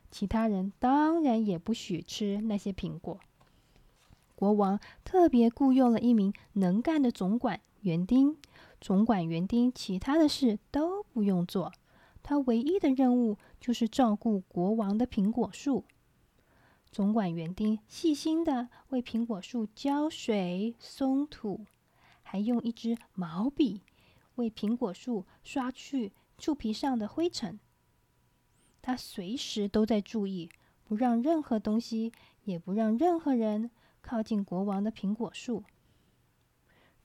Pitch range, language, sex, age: 205-265 Hz, Chinese, female, 20-39